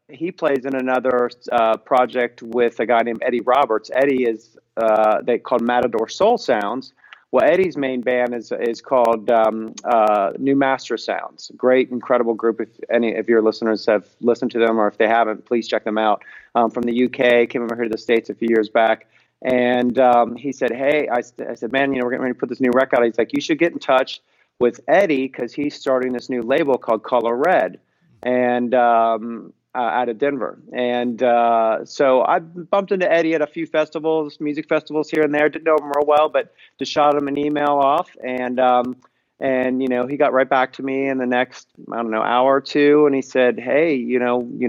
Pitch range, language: 120-135 Hz, English